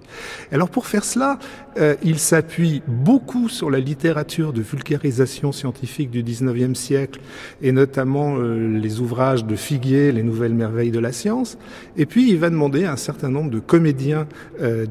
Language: French